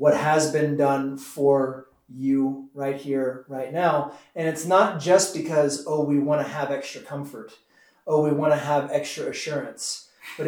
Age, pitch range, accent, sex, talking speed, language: 30-49, 140-165 Hz, American, male, 170 wpm, English